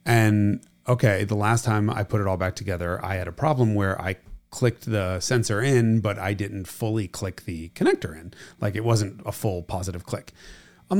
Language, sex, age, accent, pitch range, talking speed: English, male, 30-49, American, 95-125 Hz, 200 wpm